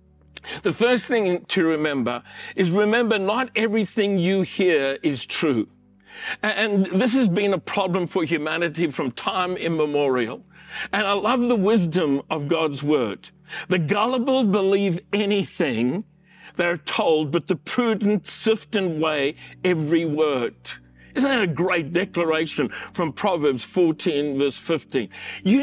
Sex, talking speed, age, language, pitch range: male, 135 wpm, 50-69, English, 155-205 Hz